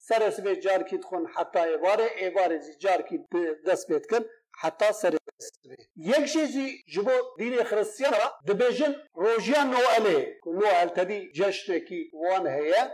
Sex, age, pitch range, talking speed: male, 50-69, 200-290 Hz, 120 wpm